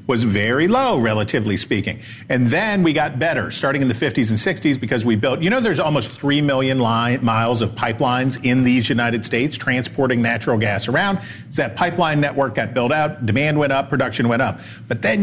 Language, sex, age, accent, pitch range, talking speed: English, male, 50-69, American, 115-150 Hz, 205 wpm